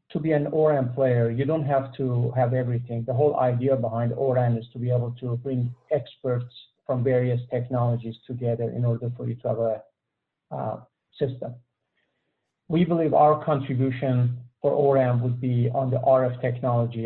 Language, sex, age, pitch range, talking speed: English, male, 50-69, 125-145 Hz, 170 wpm